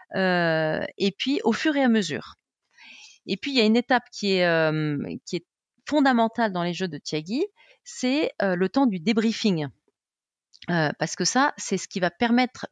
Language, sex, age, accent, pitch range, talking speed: French, female, 30-49, French, 190-250 Hz, 195 wpm